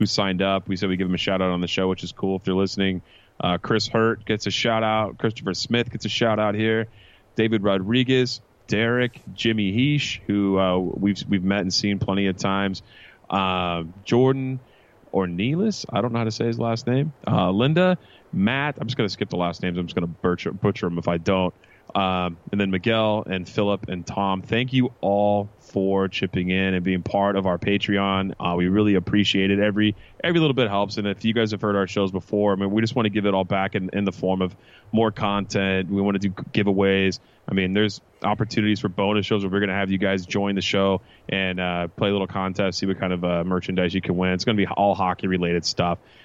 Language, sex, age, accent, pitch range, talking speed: English, male, 30-49, American, 95-110 Hz, 235 wpm